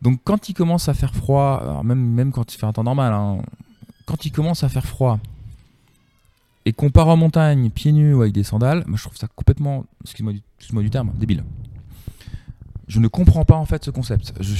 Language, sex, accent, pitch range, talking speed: French, male, French, 100-130 Hz, 225 wpm